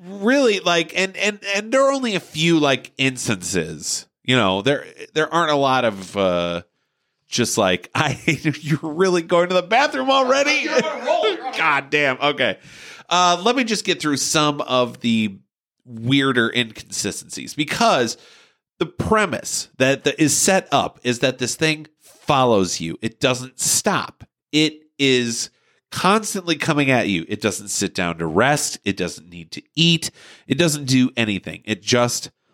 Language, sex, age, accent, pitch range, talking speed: English, male, 30-49, American, 115-160 Hz, 155 wpm